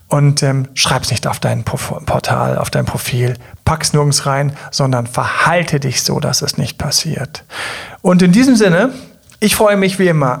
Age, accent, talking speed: 40-59, German, 180 wpm